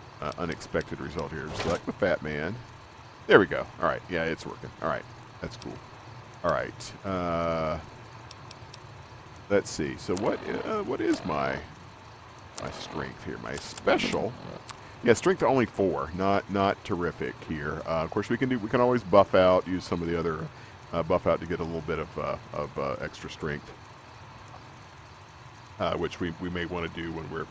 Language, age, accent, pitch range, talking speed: English, 40-59, American, 85-120 Hz, 190 wpm